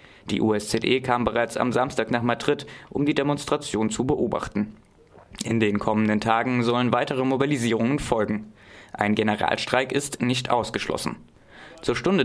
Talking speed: 135 wpm